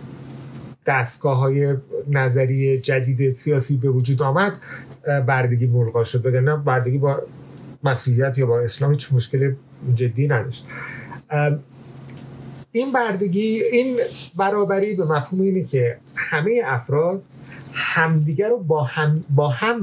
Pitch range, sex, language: 135-175 Hz, male, Persian